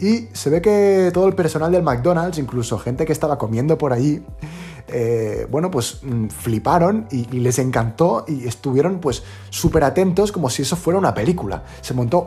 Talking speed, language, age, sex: 180 wpm, Spanish, 30-49, male